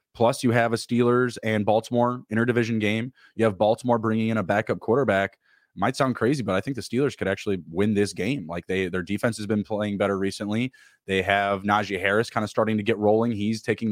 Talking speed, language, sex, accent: 225 wpm, English, male, American